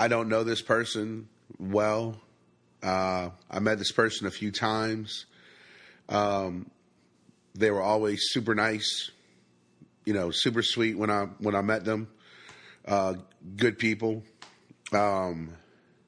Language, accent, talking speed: English, American, 125 wpm